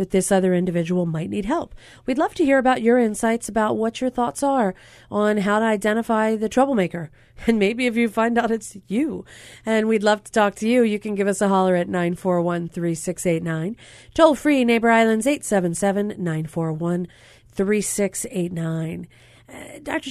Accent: American